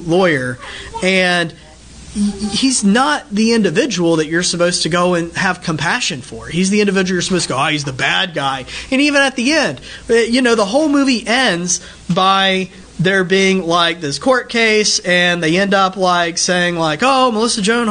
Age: 30-49